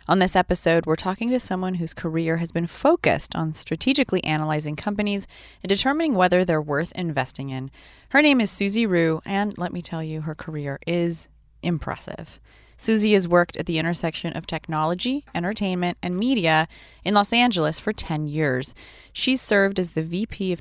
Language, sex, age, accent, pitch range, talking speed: English, female, 20-39, American, 155-195 Hz, 175 wpm